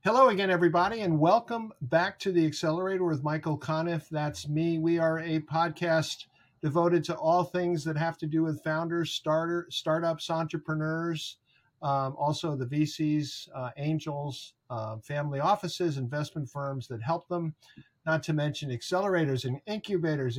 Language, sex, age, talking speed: English, male, 50-69, 150 wpm